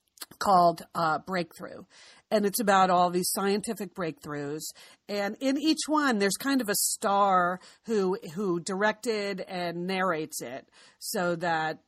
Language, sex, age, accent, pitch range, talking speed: English, female, 40-59, American, 165-205 Hz, 135 wpm